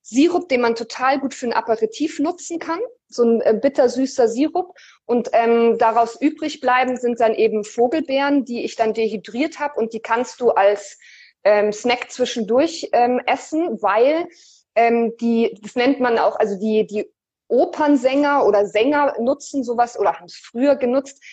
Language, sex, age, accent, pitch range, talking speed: German, female, 20-39, German, 225-285 Hz, 165 wpm